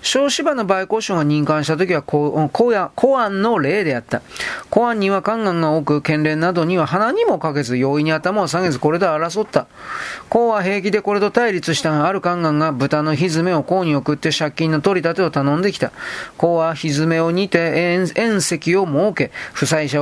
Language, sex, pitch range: Japanese, male, 145-185 Hz